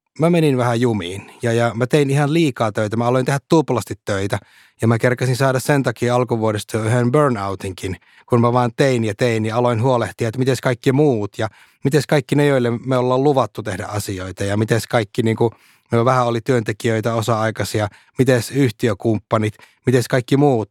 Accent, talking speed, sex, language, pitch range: native, 180 wpm, male, Finnish, 110-135 Hz